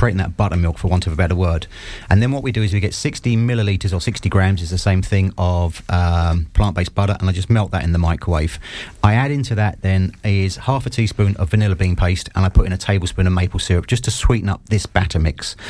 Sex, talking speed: male, 255 wpm